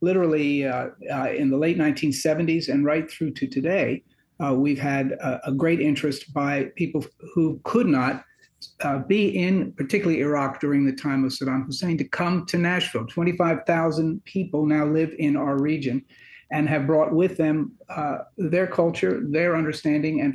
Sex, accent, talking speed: male, American, 170 wpm